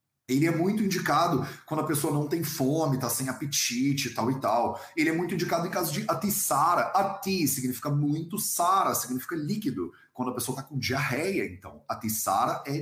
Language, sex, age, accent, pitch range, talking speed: Portuguese, male, 30-49, Brazilian, 125-170 Hz, 185 wpm